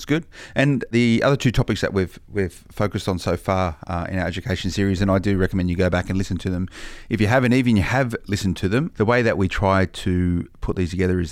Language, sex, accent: English, male, Australian